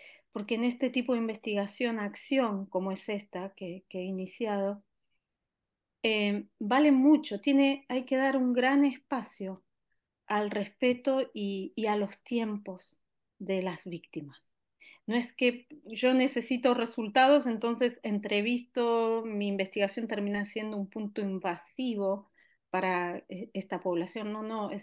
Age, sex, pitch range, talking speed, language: 30-49, female, 200-255 Hz, 130 wpm, Spanish